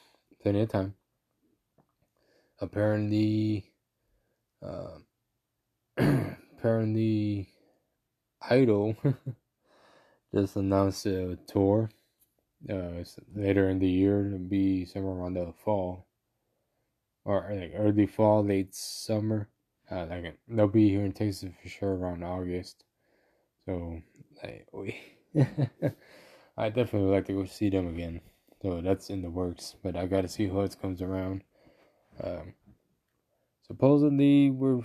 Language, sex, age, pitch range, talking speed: English, male, 20-39, 95-110 Hz, 110 wpm